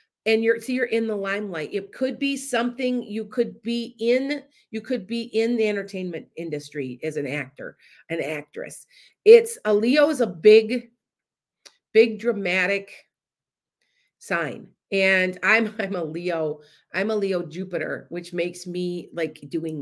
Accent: American